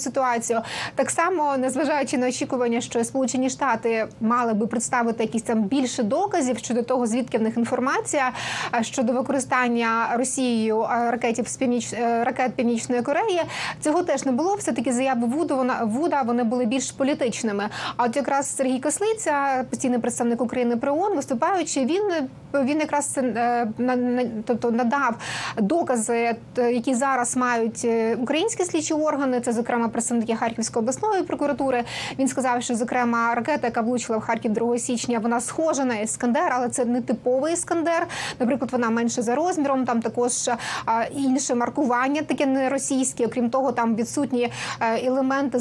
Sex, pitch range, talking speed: female, 235-275 Hz, 145 wpm